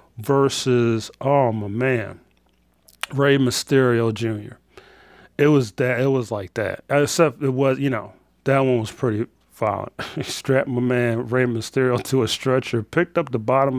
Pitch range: 120-150 Hz